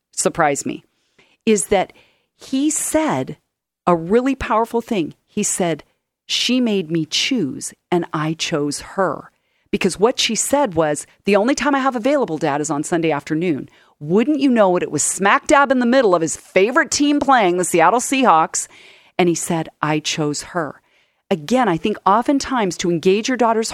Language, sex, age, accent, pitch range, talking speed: English, female, 40-59, American, 170-240 Hz, 175 wpm